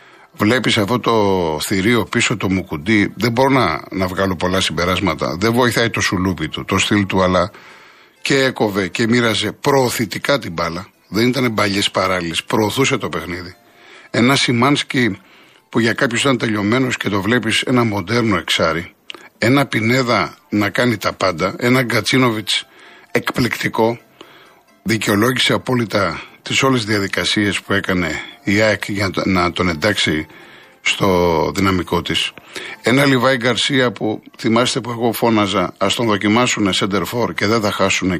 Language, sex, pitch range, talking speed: Greek, male, 95-125 Hz, 145 wpm